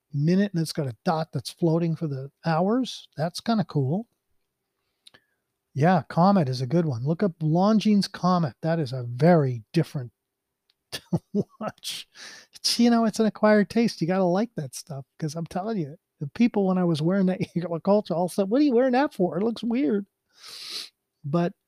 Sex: male